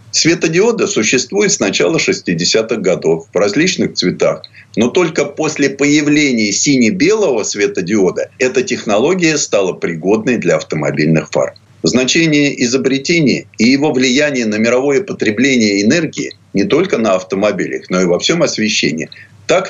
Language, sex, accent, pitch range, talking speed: Russian, male, native, 110-150 Hz, 125 wpm